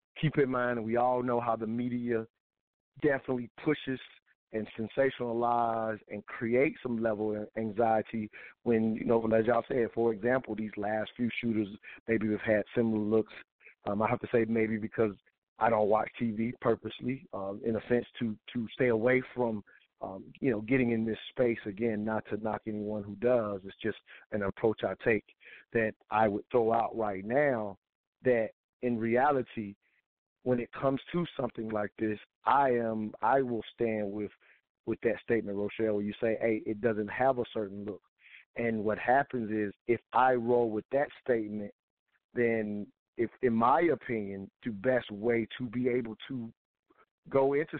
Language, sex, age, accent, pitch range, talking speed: English, male, 40-59, American, 110-125 Hz, 175 wpm